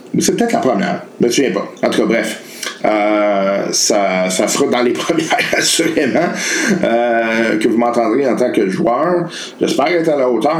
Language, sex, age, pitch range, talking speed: French, male, 50-69, 105-160 Hz, 185 wpm